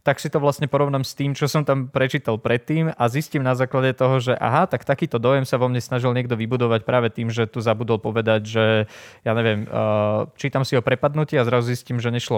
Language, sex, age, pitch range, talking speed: Slovak, male, 20-39, 115-130 Hz, 225 wpm